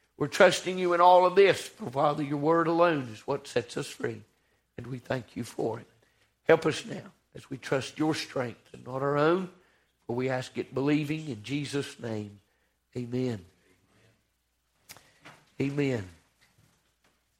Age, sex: 60-79, male